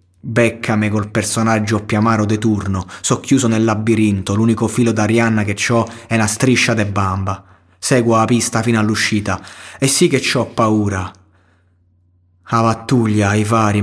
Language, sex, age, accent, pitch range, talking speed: Italian, male, 30-49, native, 100-115 Hz, 150 wpm